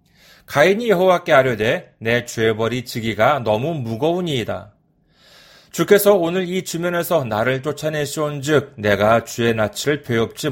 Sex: male